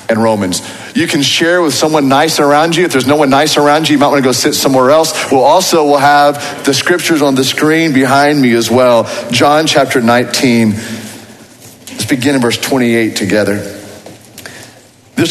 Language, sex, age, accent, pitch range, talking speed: English, male, 40-59, American, 115-150 Hz, 185 wpm